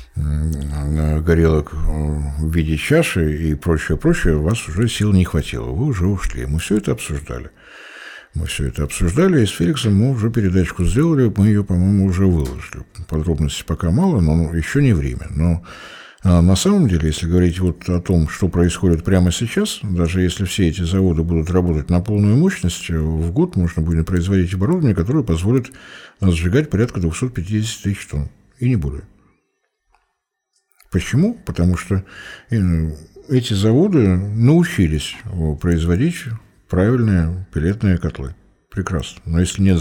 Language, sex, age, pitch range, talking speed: Russian, male, 60-79, 80-100 Hz, 145 wpm